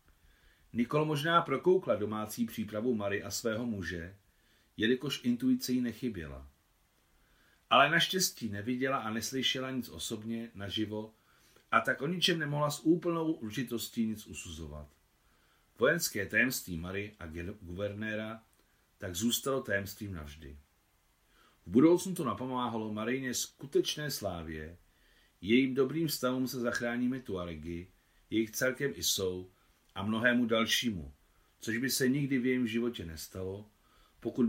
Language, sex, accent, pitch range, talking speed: Czech, male, native, 90-125 Hz, 120 wpm